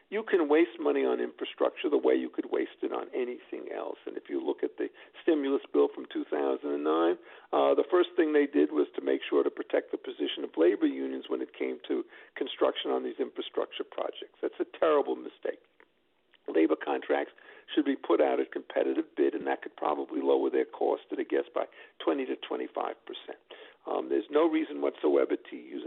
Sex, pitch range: male, 350-435 Hz